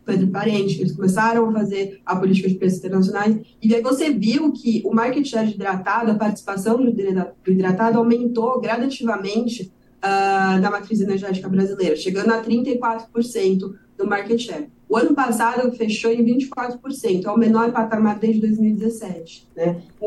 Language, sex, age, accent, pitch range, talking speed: Portuguese, female, 20-39, Brazilian, 200-240 Hz, 145 wpm